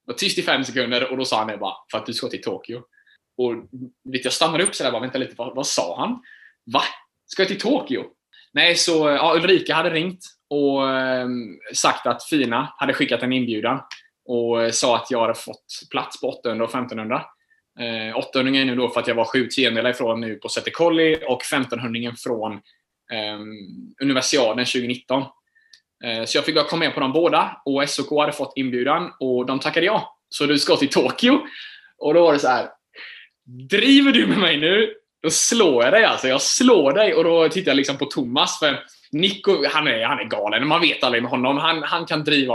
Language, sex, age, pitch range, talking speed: Swedish, male, 20-39, 125-180 Hz, 205 wpm